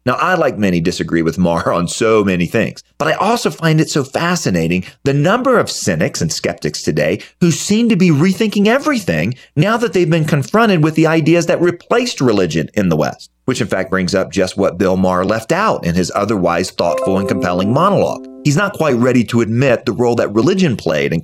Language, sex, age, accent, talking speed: English, male, 40-59, American, 210 wpm